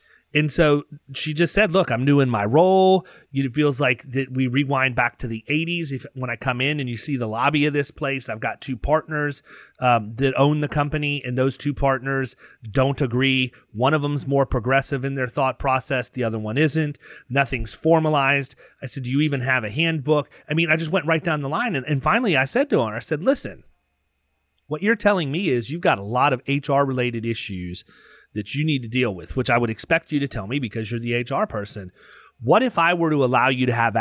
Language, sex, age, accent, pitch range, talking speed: English, male, 30-49, American, 115-145 Hz, 235 wpm